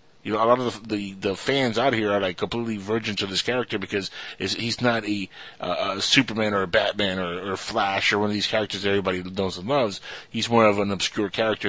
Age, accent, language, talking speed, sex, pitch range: 30-49, American, English, 250 wpm, male, 100-115 Hz